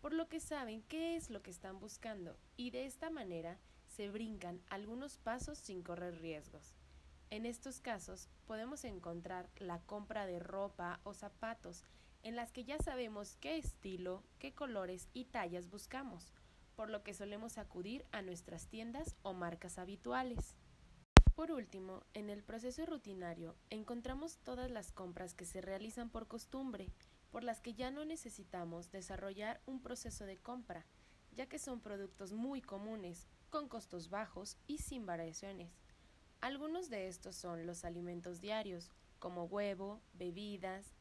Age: 20-39